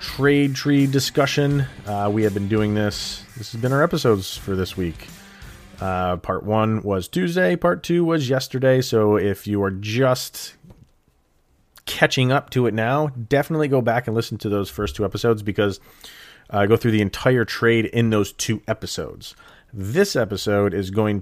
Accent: American